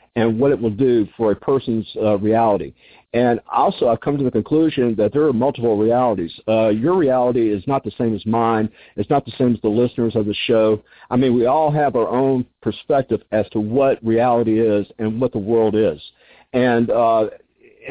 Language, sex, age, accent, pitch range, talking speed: English, male, 50-69, American, 110-135 Hz, 205 wpm